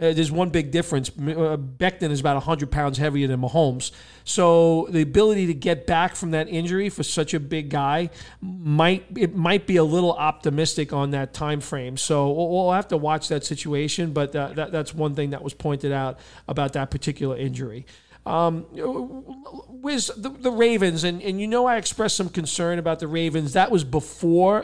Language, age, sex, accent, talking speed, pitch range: English, 40-59, male, American, 195 wpm, 150-185 Hz